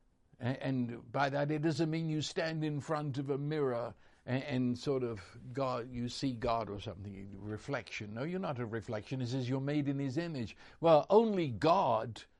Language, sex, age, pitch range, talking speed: English, male, 60-79, 125-170 Hz, 180 wpm